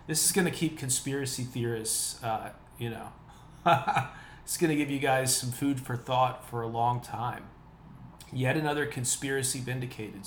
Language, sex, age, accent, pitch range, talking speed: English, male, 20-39, American, 115-140 Hz, 165 wpm